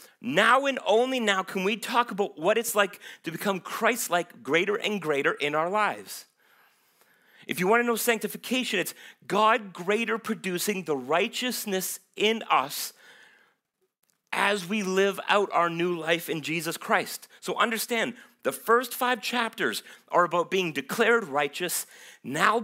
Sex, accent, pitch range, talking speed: male, American, 160-225 Hz, 150 wpm